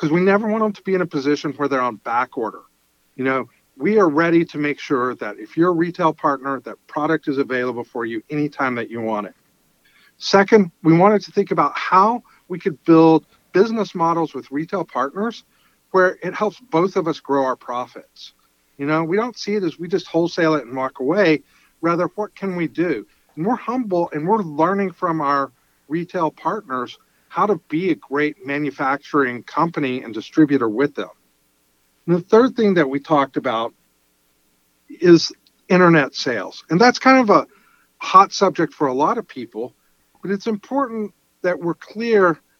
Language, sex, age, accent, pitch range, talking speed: English, male, 50-69, American, 135-190 Hz, 185 wpm